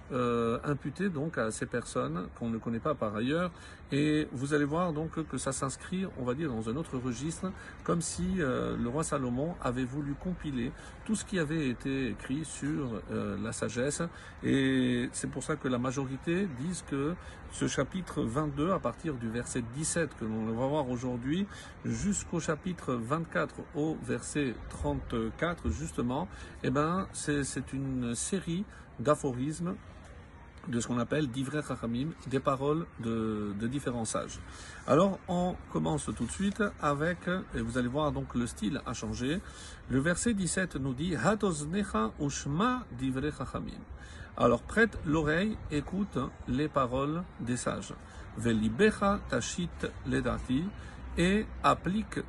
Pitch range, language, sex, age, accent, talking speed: 120-165 Hz, French, male, 50-69, French, 140 wpm